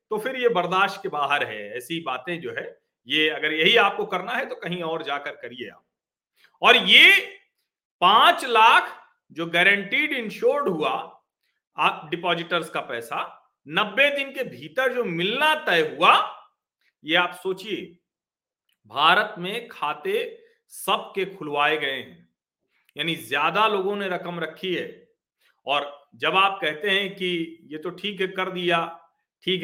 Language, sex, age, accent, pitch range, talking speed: Hindi, male, 50-69, native, 165-235 Hz, 145 wpm